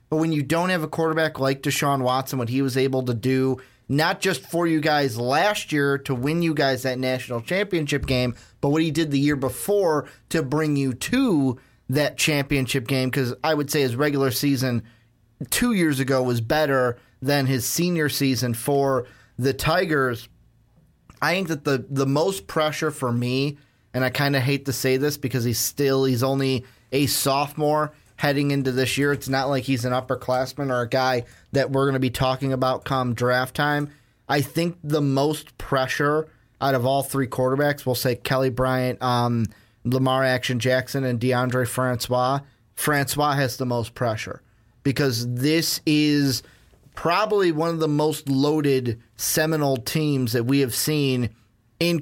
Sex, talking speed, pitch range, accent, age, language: male, 175 wpm, 125-150 Hz, American, 30-49, English